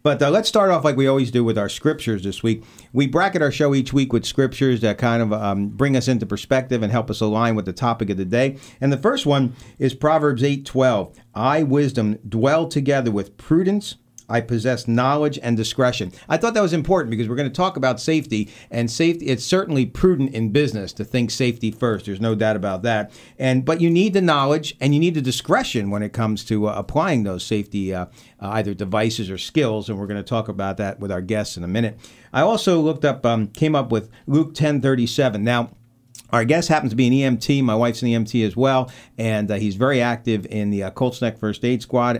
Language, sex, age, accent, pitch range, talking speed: English, male, 50-69, American, 110-135 Hz, 230 wpm